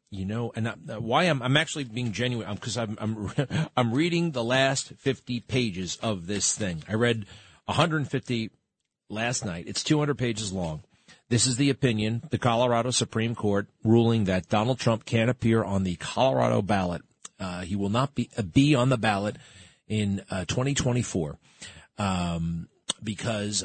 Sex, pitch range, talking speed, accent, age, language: male, 95-125 Hz, 160 wpm, American, 40-59, English